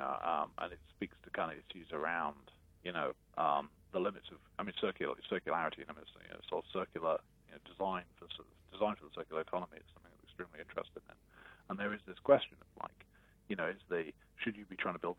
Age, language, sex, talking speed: 40-59, English, male, 230 wpm